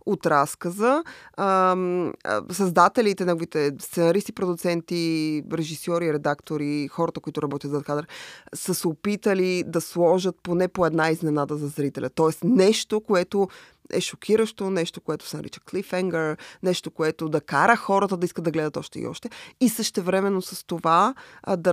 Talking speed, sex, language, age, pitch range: 145 wpm, female, Bulgarian, 20-39, 160-195 Hz